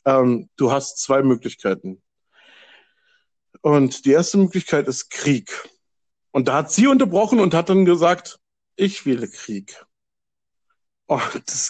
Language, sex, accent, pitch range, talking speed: German, male, German, 140-195 Hz, 125 wpm